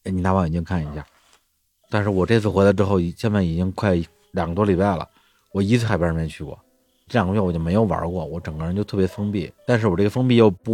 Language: Chinese